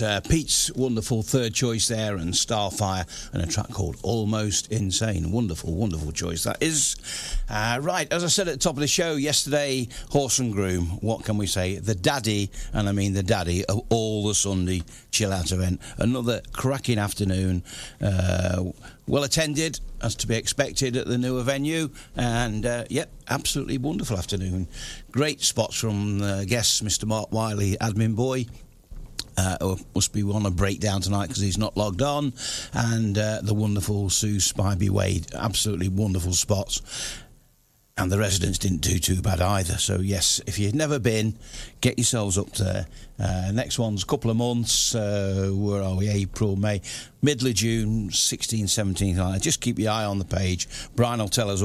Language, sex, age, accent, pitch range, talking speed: English, male, 50-69, British, 100-120 Hz, 175 wpm